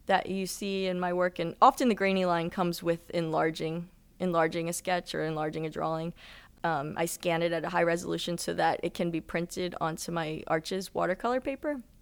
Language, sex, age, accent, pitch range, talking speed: English, female, 20-39, American, 160-185 Hz, 200 wpm